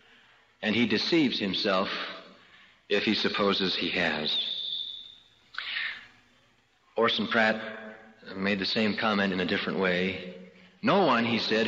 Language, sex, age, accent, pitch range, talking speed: English, male, 40-59, American, 110-140 Hz, 120 wpm